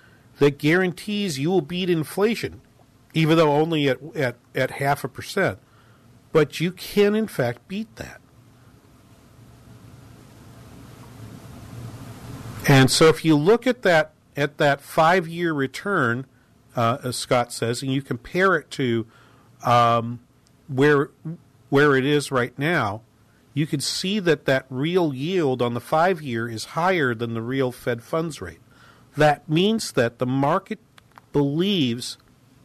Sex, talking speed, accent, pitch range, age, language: male, 135 wpm, American, 120-160 Hz, 50-69, English